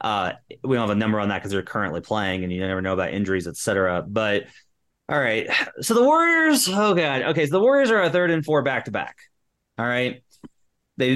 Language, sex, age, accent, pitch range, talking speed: English, male, 30-49, American, 105-135 Hz, 230 wpm